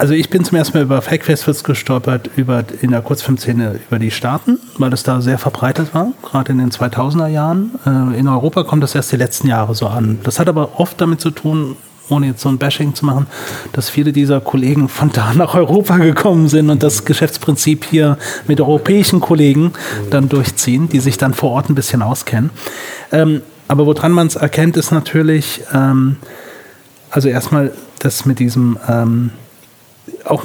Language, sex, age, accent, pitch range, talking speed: German, male, 40-59, German, 130-160 Hz, 180 wpm